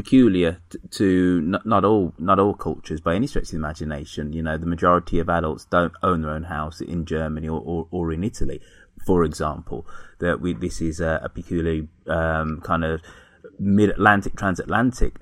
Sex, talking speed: male, 185 wpm